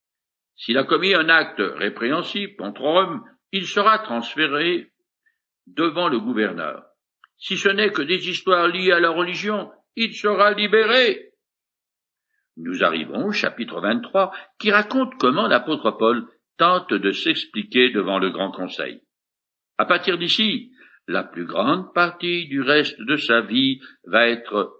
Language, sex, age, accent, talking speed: French, male, 60-79, French, 140 wpm